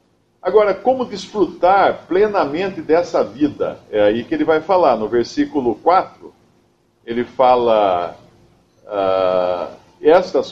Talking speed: 110 wpm